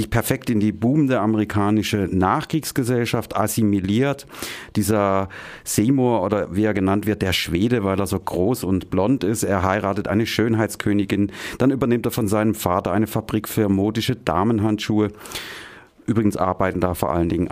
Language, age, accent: German, 40-59, German